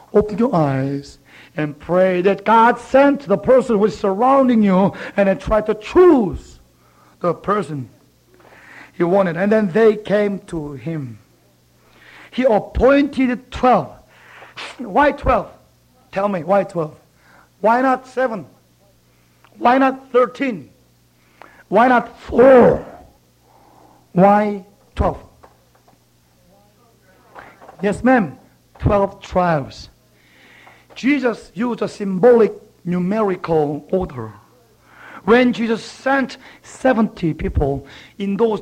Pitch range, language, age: 155-245 Hz, Korean, 60-79